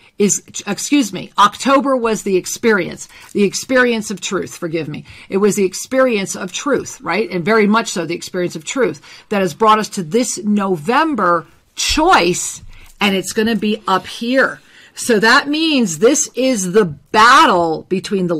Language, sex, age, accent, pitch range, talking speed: English, female, 50-69, American, 185-245 Hz, 170 wpm